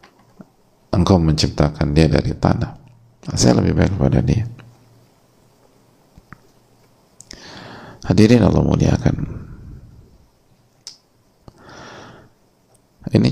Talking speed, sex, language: 60 wpm, male, Indonesian